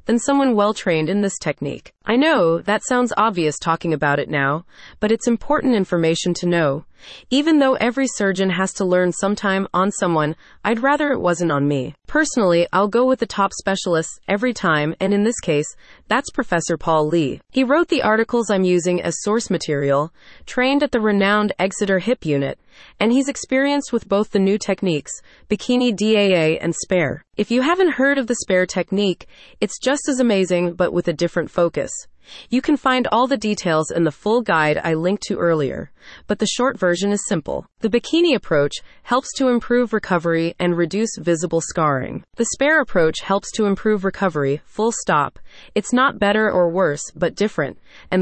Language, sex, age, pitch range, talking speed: English, female, 30-49, 170-235 Hz, 185 wpm